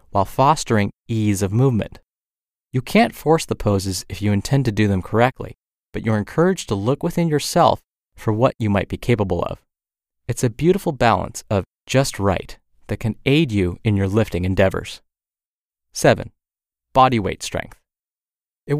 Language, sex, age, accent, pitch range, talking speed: English, male, 30-49, American, 100-140 Hz, 165 wpm